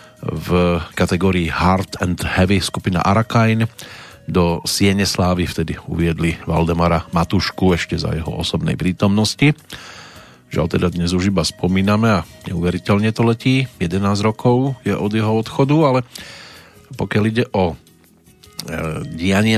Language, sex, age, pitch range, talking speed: Slovak, male, 40-59, 90-105 Hz, 125 wpm